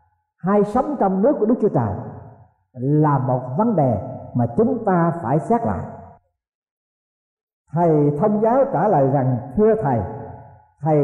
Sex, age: male, 50-69